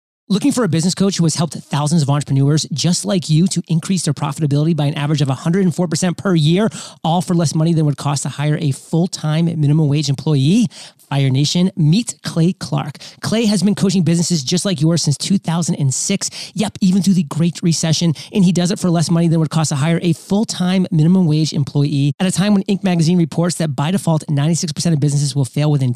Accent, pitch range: American, 155-185 Hz